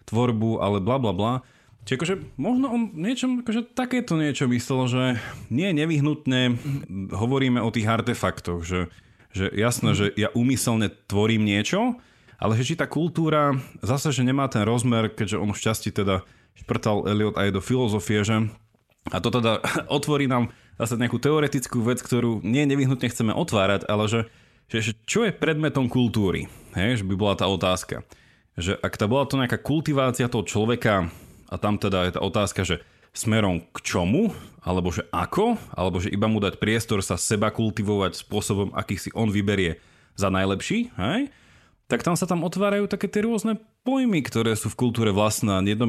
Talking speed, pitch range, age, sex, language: 170 wpm, 100-130 Hz, 30-49, male, Slovak